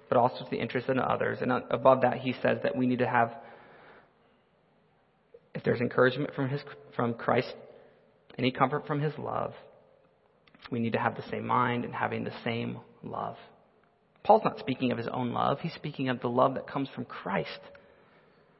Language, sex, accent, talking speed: English, male, American, 185 wpm